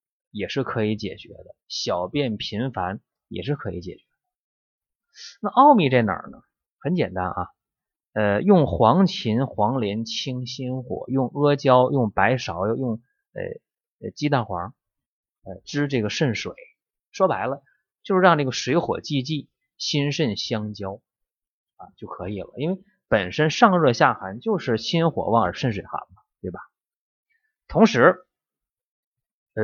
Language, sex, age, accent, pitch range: Chinese, male, 20-39, native, 110-155 Hz